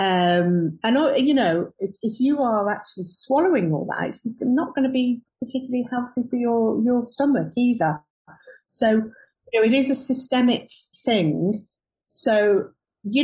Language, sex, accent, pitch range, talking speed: English, female, British, 170-215 Hz, 155 wpm